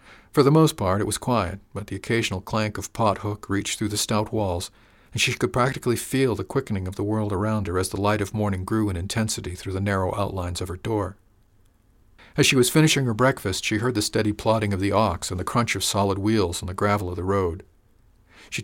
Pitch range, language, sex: 95-110 Hz, English, male